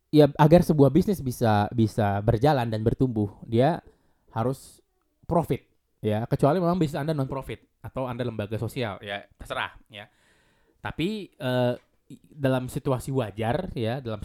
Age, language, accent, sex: 20-39, Indonesian, native, male